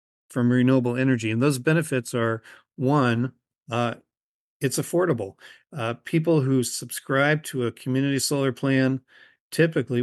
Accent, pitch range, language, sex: American, 120-140 Hz, English, male